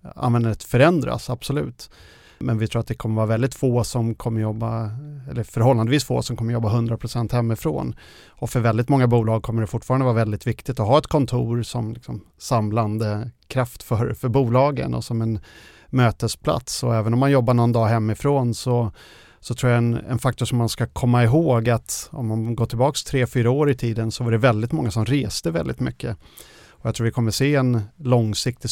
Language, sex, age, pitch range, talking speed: Swedish, male, 30-49, 115-125 Hz, 200 wpm